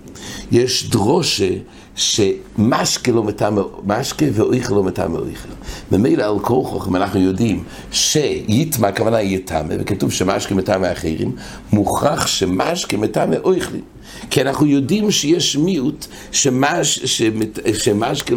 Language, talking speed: English, 90 wpm